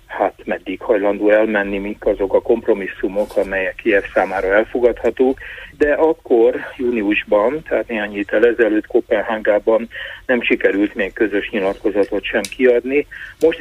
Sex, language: male, Hungarian